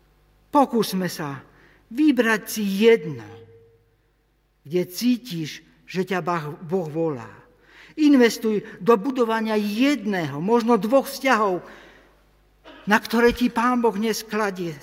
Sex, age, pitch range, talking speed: male, 50-69, 165-235 Hz, 95 wpm